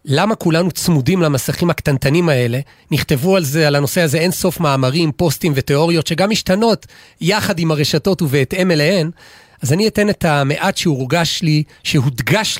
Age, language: 40-59, Hebrew